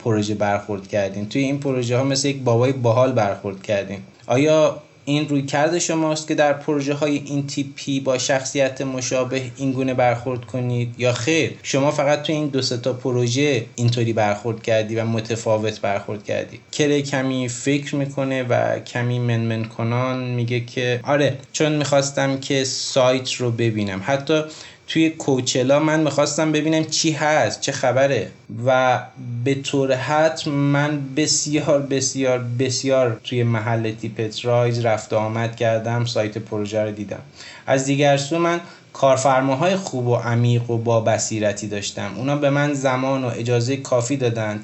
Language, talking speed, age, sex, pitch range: Persian, 150 wpm, 20-39, male, 115-140 Hz